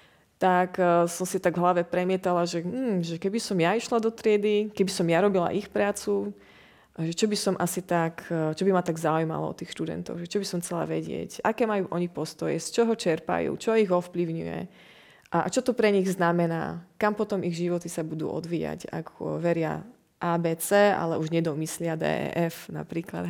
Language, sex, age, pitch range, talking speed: Slovak, female, 30-49, 160-190 Hz, 185 wpm